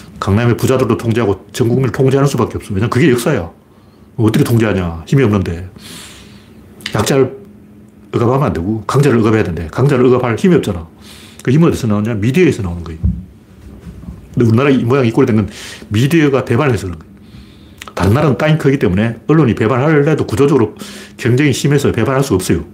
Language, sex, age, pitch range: Korean, male, 40-59, 100-130 Hz